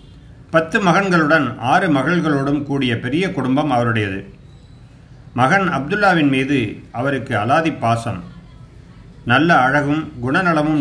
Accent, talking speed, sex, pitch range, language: native, 95 wpm, male, 125-160 Hz, Tamil